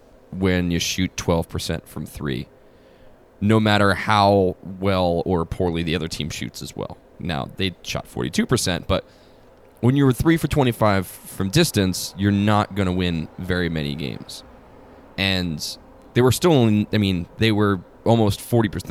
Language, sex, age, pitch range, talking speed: English, male, 20-39, 90-105 Hz, 160 wpm